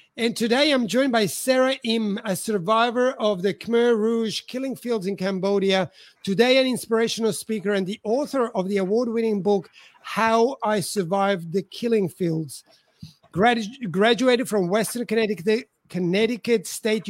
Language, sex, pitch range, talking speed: English, male, 200-240 Hz, 140 wpm